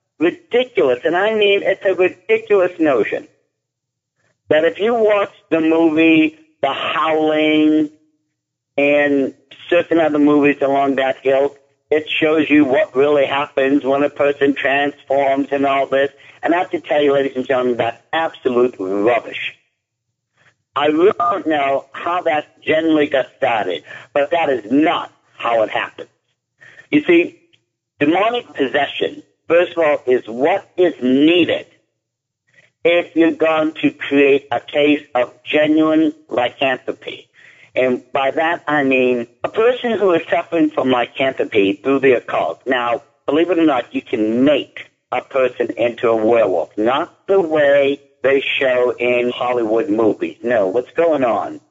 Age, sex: 50-69, male